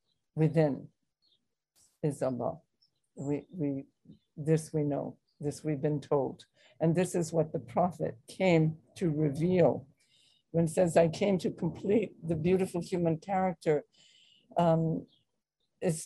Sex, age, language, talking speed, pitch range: female, 60-79, English, 115 wpm, 155-180 Hz